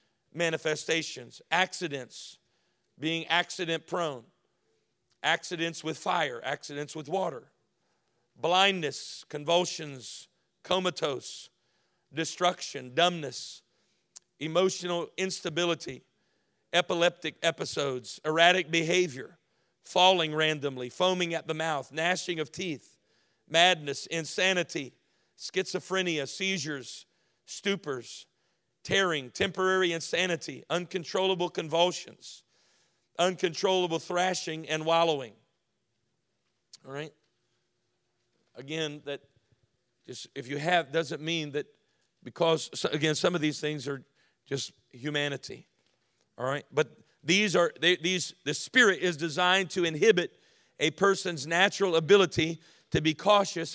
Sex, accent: male, American